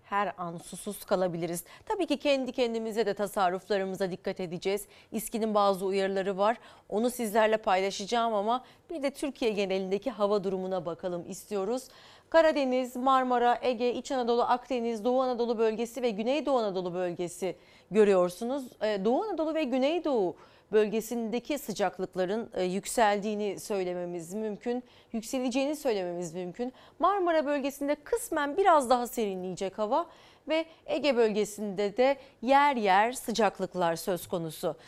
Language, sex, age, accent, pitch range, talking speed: Turkish, female, 40-59, native, 190-255 Hz, 120 wpm